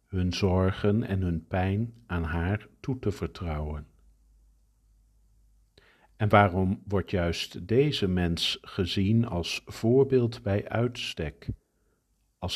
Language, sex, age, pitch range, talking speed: Dutch, male, 50-69, 85-105 Hz, 105 wpm